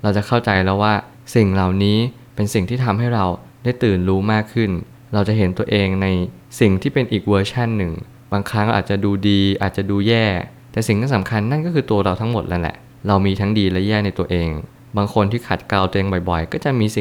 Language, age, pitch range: Thai, 20-39, 95-120 Hz